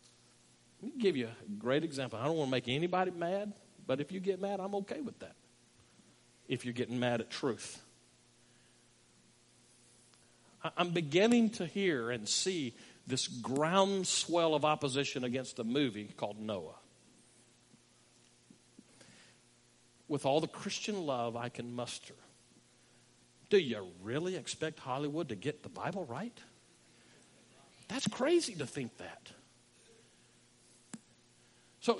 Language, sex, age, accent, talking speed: English, male, 50-69, American, 125 wpm